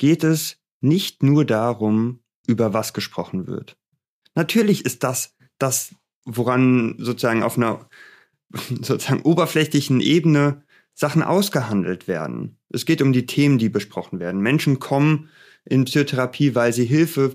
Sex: male